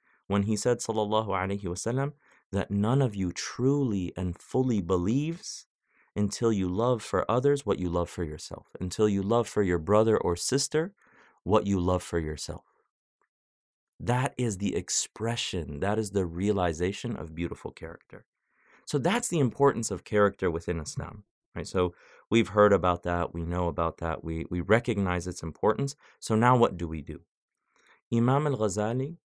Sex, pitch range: male, 90-115 Hz